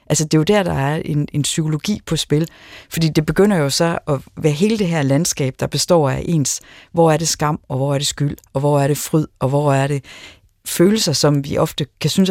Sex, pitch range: female, 135-160 Hz